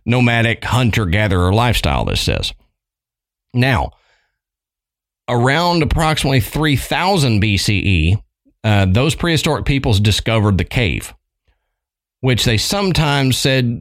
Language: English